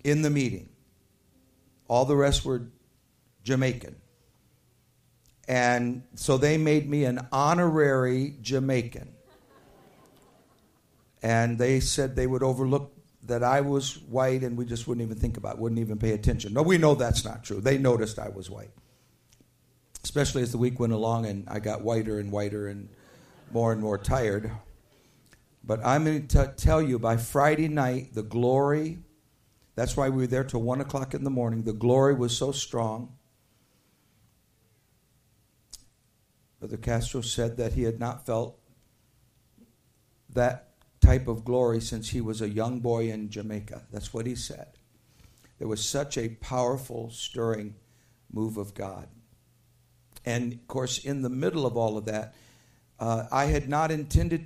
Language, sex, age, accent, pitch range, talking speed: English, male, 50-69, American, 115-130 Hz, 155 wpm